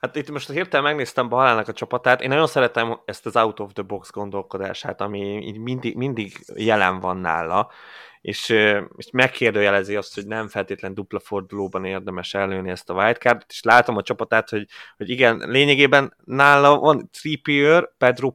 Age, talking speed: 30-49, 155 wpm